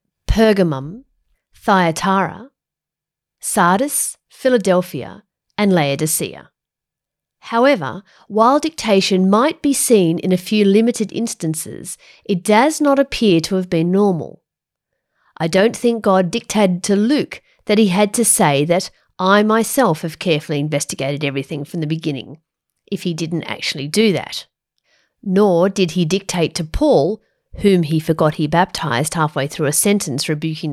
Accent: Australian